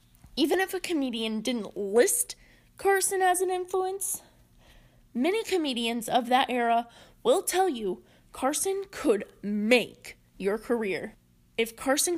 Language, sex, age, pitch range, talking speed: English, female, 20-39, 225-285 Hz, 125 wpm